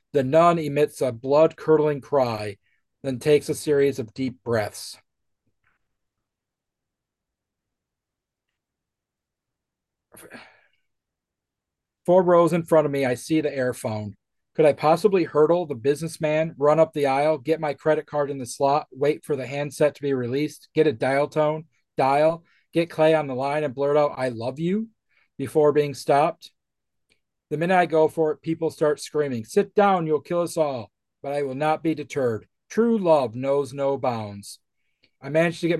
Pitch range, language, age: 135-160 Hz, English, 40-59